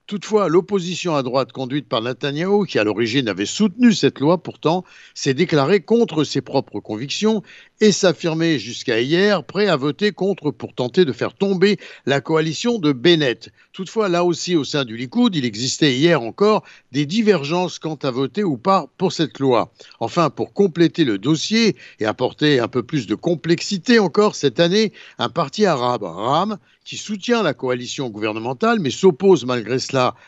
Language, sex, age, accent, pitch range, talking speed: Italian, male, 60-79, French, 130-180 Hz, 170 wpm